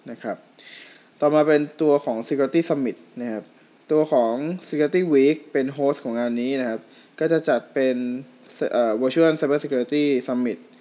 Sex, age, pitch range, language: male, 20-39, 125-150 Hz, Thai